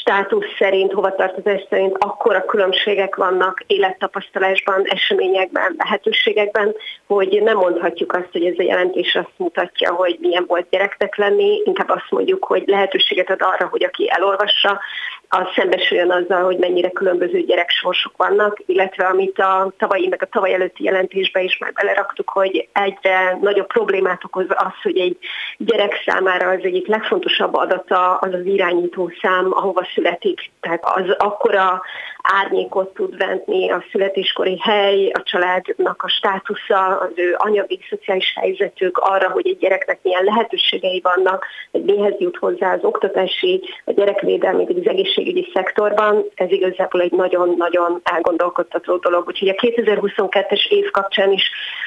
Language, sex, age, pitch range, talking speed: Hungarian, female, 30-49, 185-210 Hz, 145 wpm